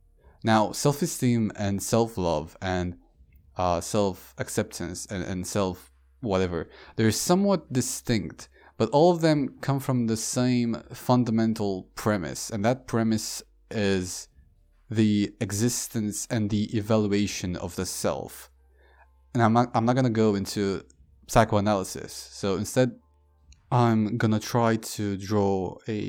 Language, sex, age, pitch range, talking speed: English, male, 20-39, 95-120 Hz, 125 wpm